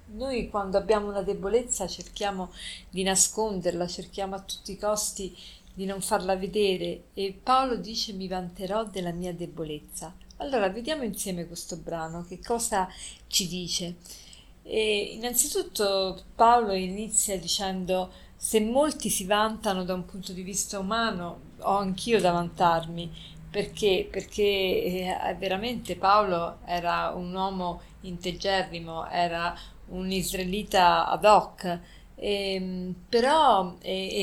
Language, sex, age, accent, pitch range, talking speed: Italian, female, 40-59, native, 180-205 Hz, 120 wpm